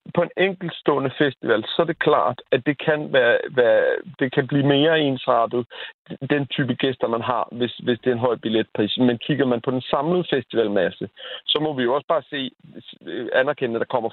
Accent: native